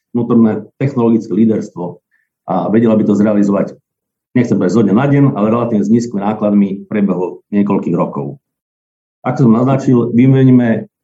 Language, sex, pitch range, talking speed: Slovak, male, 105-130 Hz, 140 wpm